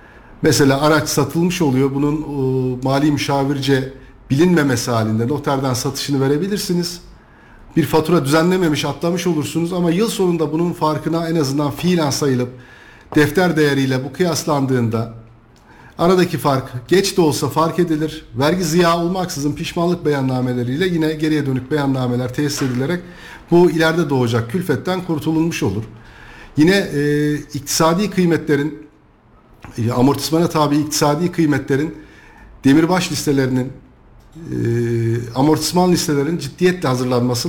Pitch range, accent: 130-165 Hz, native